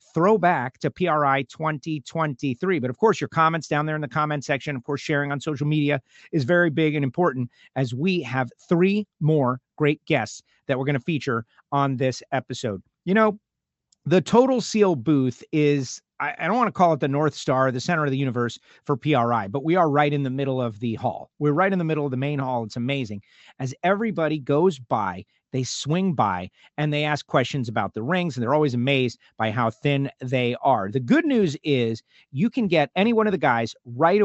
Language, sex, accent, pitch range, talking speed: English, male, American, 130-165 Hz, 210 wpm